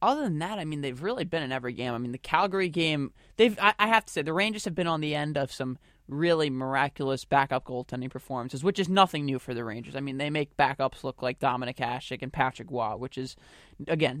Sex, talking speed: male, 235 wpm